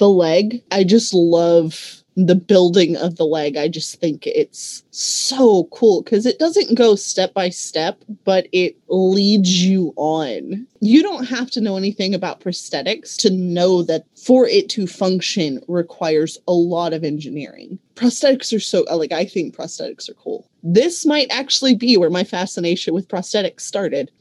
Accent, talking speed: American, 165 wpm